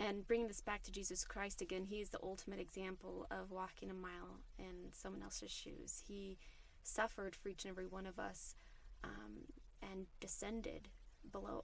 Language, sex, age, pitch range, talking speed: English, female, 20-39, 185-215 Hz, 175 wpm